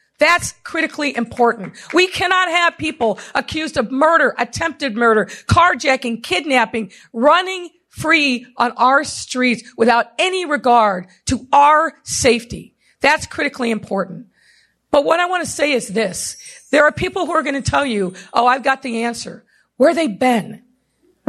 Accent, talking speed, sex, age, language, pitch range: American, 155 wpm, female, 50-69, English, 220-285 Hz